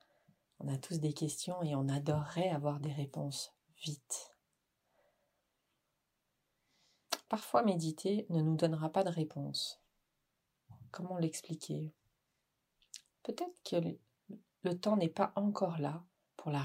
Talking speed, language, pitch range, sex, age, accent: 115 wpm, French, 145-175 Hz, female, 40-59, French